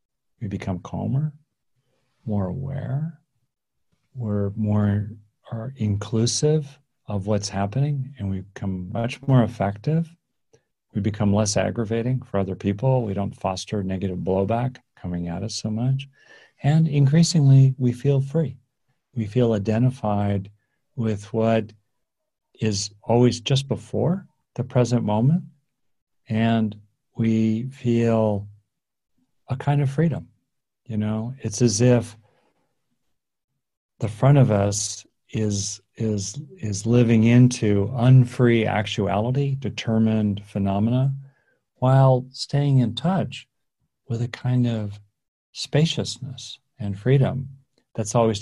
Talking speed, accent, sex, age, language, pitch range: 110 wpm, American, male, 50-69, English, 105-130 Hz